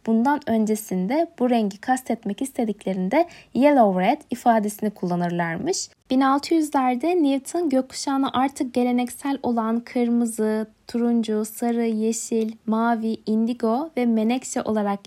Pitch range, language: 220-270 Hz, Turkish